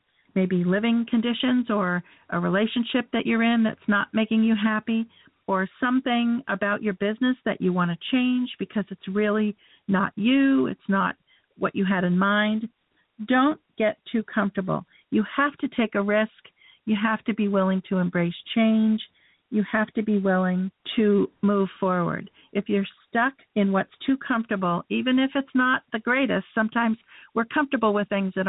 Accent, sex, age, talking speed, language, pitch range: American, female, 50-69, 170 wpm, English, 190-230 Hz